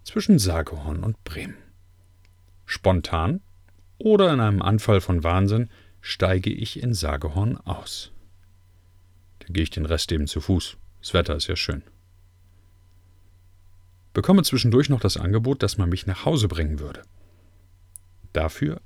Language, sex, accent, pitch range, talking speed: German, male, German, 90-105 Hz, 135 wpm